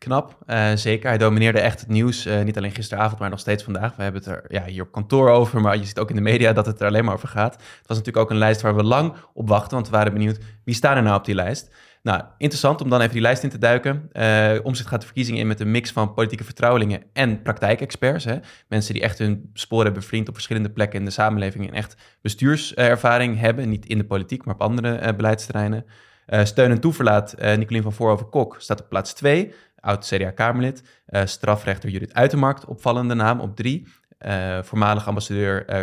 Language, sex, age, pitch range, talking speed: Dutch, male, 20-39, 105-120 Hz, 235 wpm